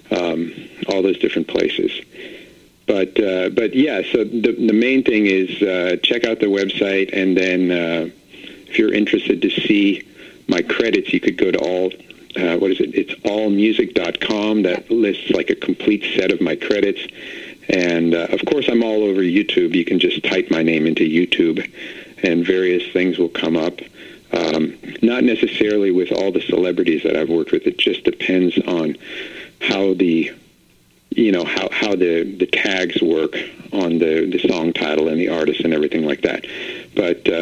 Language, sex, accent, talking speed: English, male, American, 175 wpm